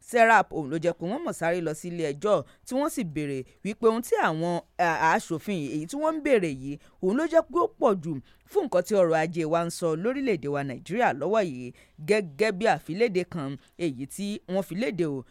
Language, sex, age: English, female, 30-49